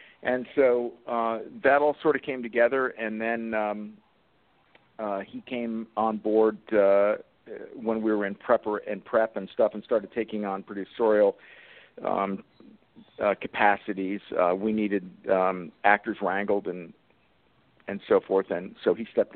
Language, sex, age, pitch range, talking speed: English, male, 50-69, 100-115 Hz, 150 wpm